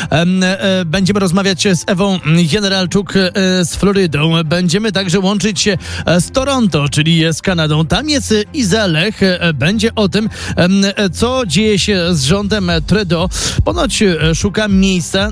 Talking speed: 125 wpm